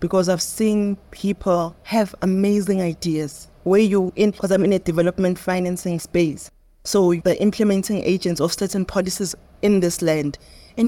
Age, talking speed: 20-39, 150 wpm